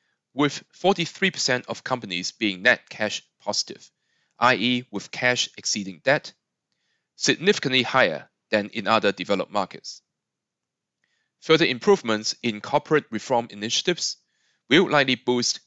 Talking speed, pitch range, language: 110 wpm, 105-145 Hz, English